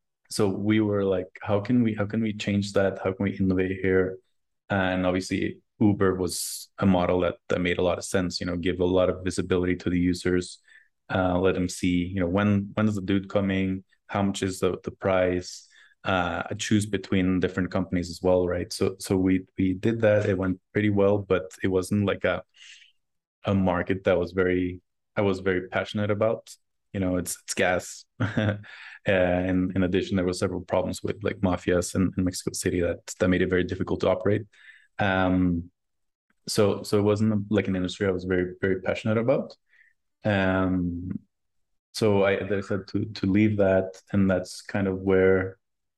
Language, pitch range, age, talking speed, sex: English, 90-100 Hz, 20-39, 195 wpm, male